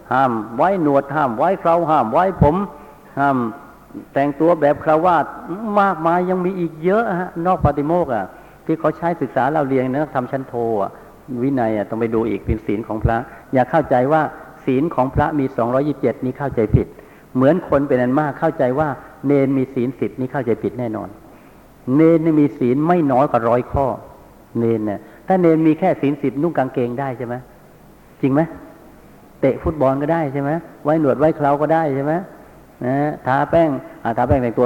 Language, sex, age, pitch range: Thai, male, 60-79, 125-160 Hz